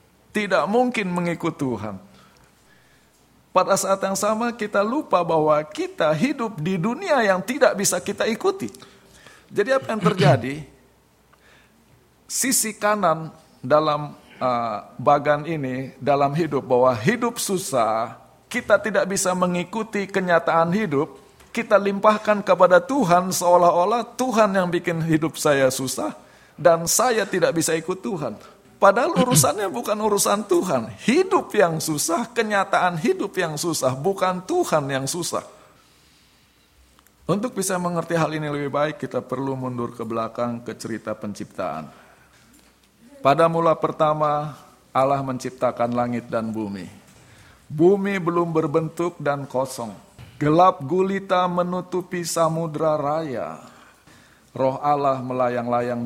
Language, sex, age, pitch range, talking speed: Indonesian, male, 50-69, 130-195 Hz, 120 wpm